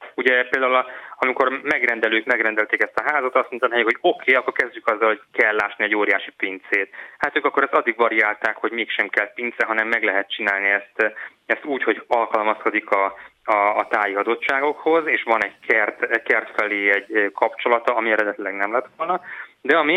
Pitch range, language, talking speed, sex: 105-140 Hz, Hungarian, 180 wpm, male